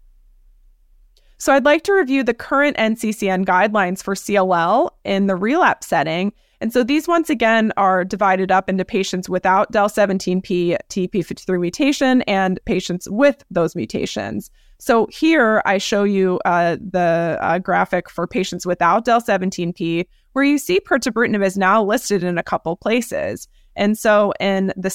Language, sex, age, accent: English, female, 20-39, American